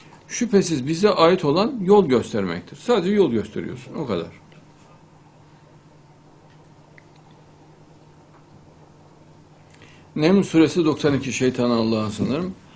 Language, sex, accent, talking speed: Turkish, male, native, 80 wpm